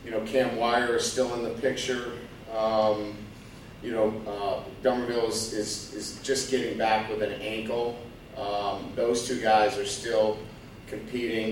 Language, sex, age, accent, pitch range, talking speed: English, male, 40-59, American, 105-120 Hz, 155 wpm